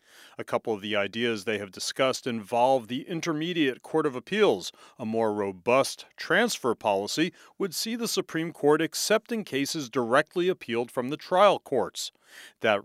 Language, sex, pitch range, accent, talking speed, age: English, male, 110-165 Hz, American, 155 wpm, 40-59